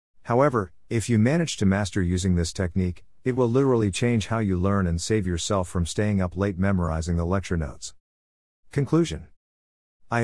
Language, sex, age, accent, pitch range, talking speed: English, male, 50-69, American, 85-110 Hz, 170 wpm